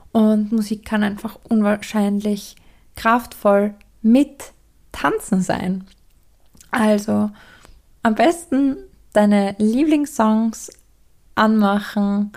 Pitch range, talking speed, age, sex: 205-240 Hz, 75 wpm, 20-39, female